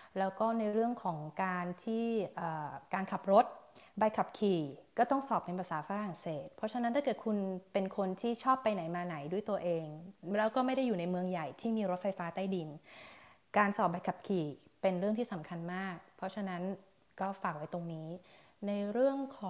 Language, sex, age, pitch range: Thai, female, 20-39, 180-225 Hz